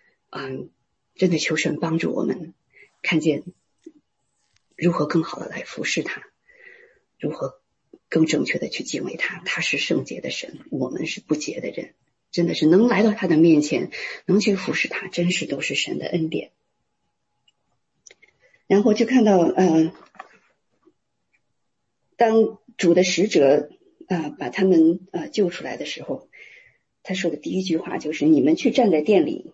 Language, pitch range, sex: English, 160-235 Hz, female